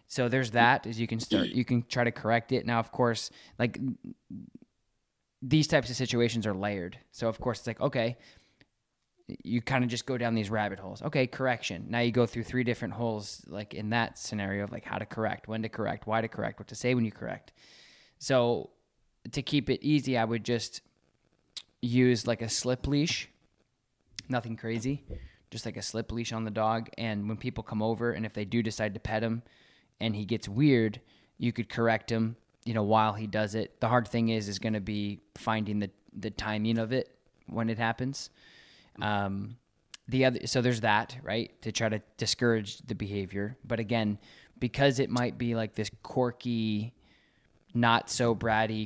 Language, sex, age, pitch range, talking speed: English, male, 20-39, 110-120 Hz, 195 wpm